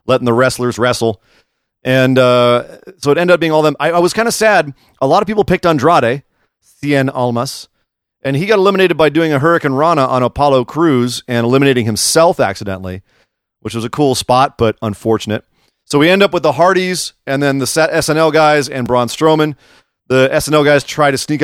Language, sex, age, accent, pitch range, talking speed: English, male, 30-49, American, 125-160 Hz, 200 wpm